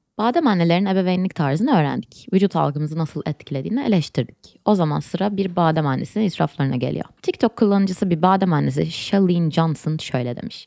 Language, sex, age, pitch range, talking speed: Turkish, female, 20-39, 155-210 Hz, 150 wpm